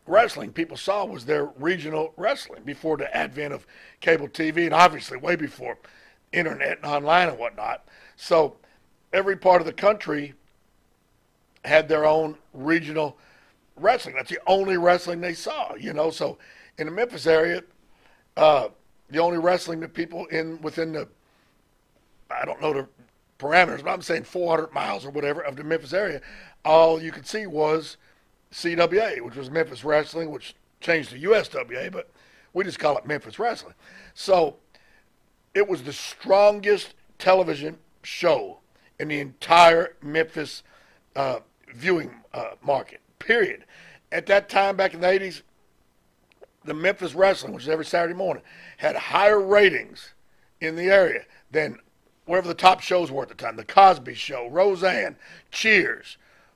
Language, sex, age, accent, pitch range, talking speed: English, male, 60-79, American, 155-185 Hz, 155 wpm